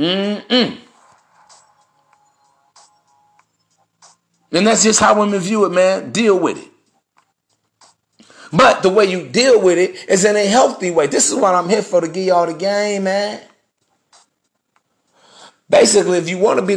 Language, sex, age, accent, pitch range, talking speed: English, male, 40-59, American, 155-195 Hz, 155 wpm